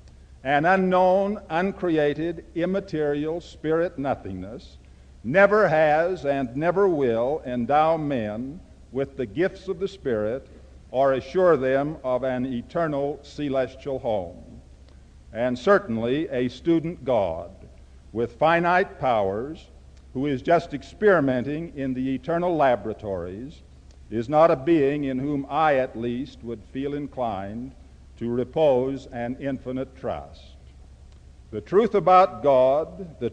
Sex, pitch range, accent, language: male, 110-170 Hz, American, English